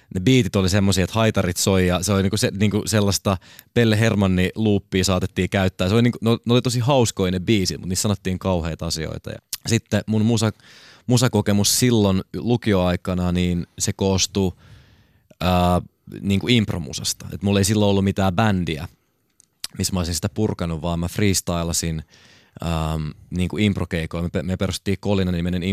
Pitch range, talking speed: 85-100 Hz, 160 wpm